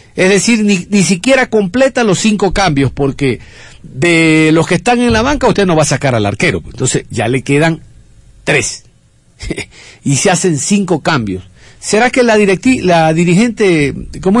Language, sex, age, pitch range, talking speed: Spanish, male, 50-69, 160-220 Hz, 170 wpm